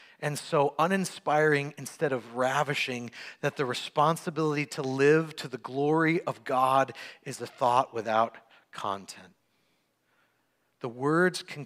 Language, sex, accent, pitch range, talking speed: English, male, American, 120-190 Hz, 125 wpm